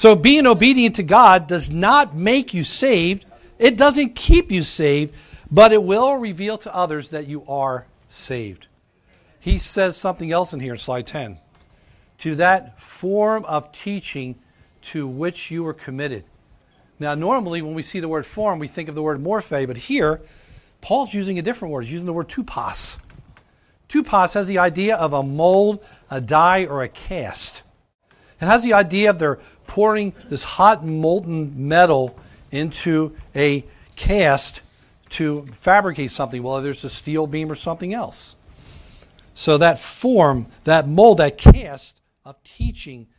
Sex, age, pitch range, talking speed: male, 40-59, 140-195 Hz, 160 wpm